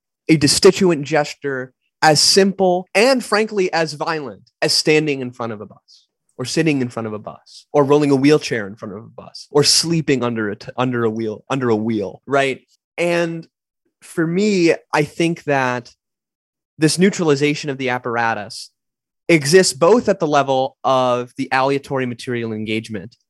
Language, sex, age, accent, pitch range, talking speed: English, male, 20-39, American, 115-155 Hz, 160 wpm